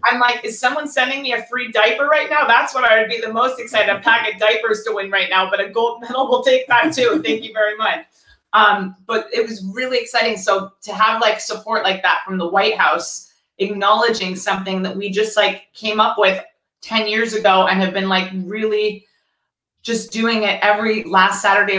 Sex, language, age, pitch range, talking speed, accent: female, English, 30-49, 185-220 Hz, 220 wpm, American